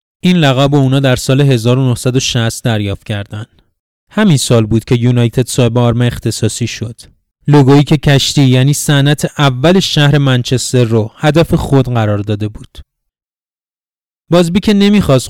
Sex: male